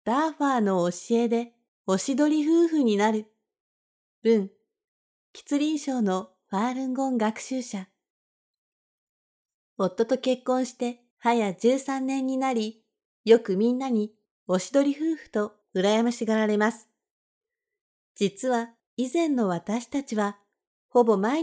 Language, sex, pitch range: Japanese, female, 215-270 Hz